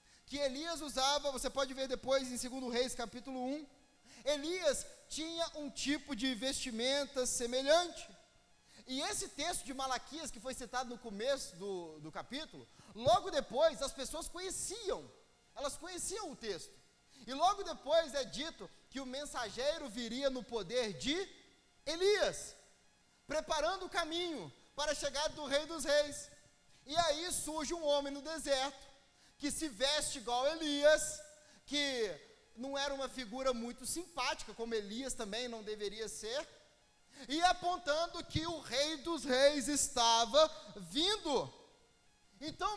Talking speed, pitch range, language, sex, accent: 140 wpm, 255-315 Hz, Portuguese, male, Brazilian